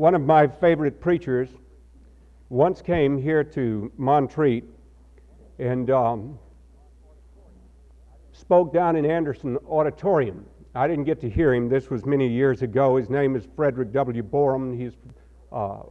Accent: American